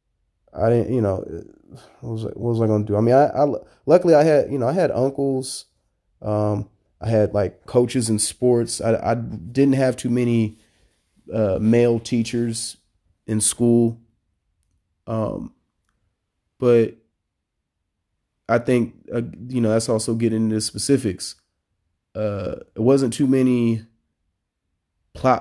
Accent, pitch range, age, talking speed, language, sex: American, 105-120 Hz, 20-39, 145 wpm, English, male